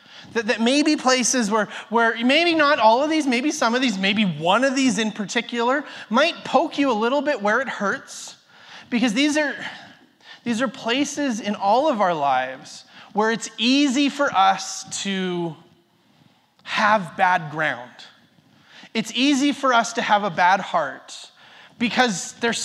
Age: 30-49